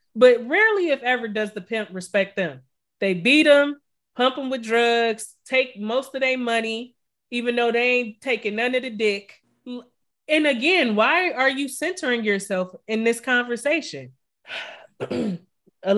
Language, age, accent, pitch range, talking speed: English, 30-49, American, 185-245 Hz, 155 wpm